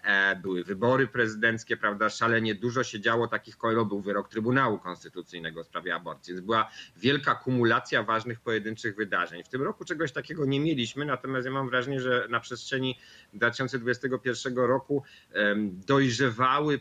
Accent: native